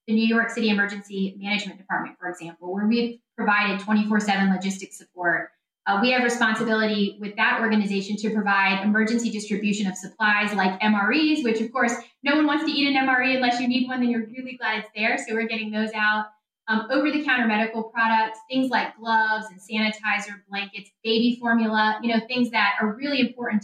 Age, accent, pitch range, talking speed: 10-29, American, 200-235 Hz, 190 wpm